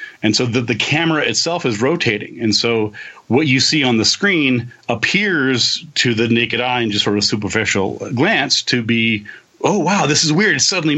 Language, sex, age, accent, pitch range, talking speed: English, male, 30-49, American, 115-145 Hz, 195 wpm